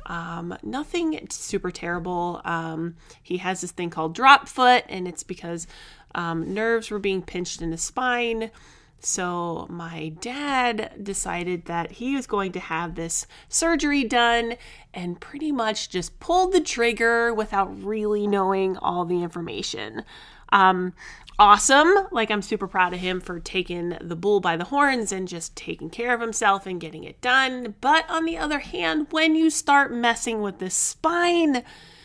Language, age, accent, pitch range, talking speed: English, 30-49, American, 175-270 Hz, 160 wpm